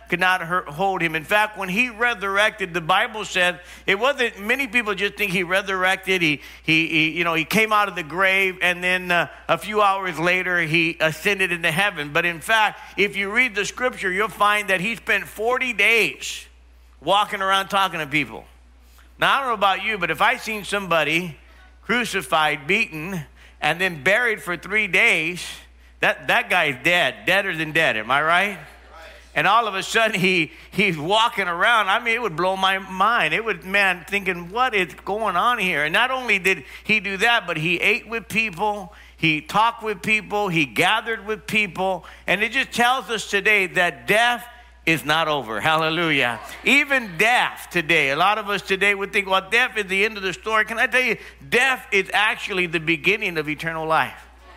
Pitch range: 175-215 Hz